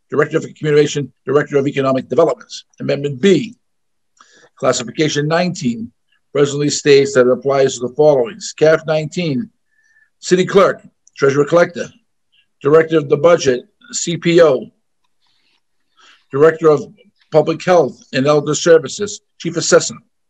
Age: 50-69